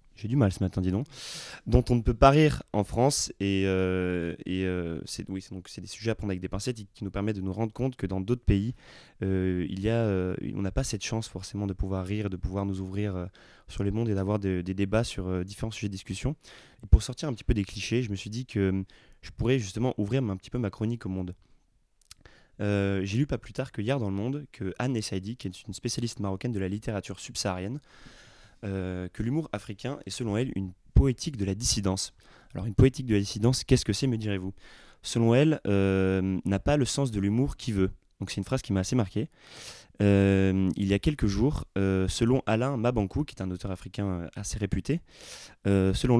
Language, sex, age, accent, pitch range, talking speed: French, male, 20-39, French, 95-125 Hz, 240 wpm